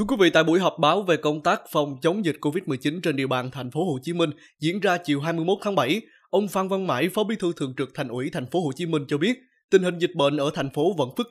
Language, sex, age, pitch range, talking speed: Vietnamese, male, 20-39, 145-195 Hz, 290 wpm